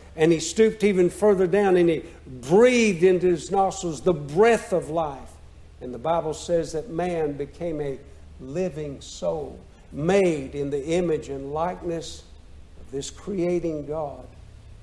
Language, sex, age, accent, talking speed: English, male, 60-79, American, 145 wpm